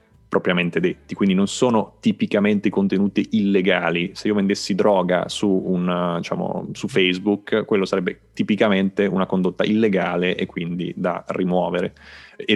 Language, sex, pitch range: Italian, male, 90-105 Hz